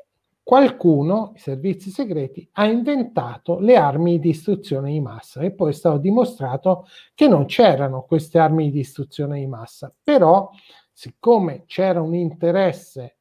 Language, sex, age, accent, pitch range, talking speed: Italian, male, 50-69, native, 160-210 Hz, 140 wpm